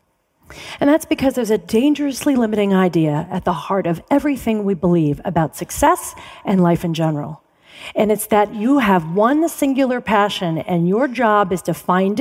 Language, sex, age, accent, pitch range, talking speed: English, female, 40-59, American, 180-275 Hz, 170 wpm